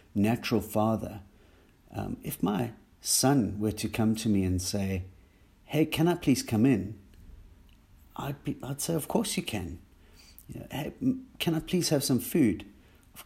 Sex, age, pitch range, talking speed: male, 50-69, 95-120 Hz, 170 wpm